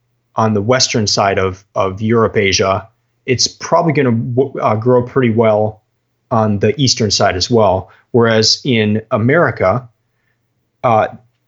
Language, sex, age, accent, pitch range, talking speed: English, male, 30-49, American, 110-130 Hz, 135 wpm